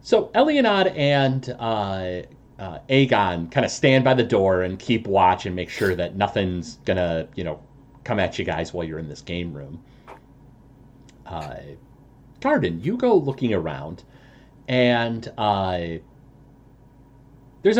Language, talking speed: English, 145 wpm